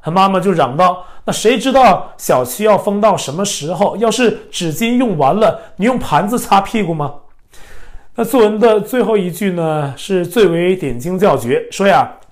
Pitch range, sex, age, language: 165-220 Hz, male, 30-49, Chinese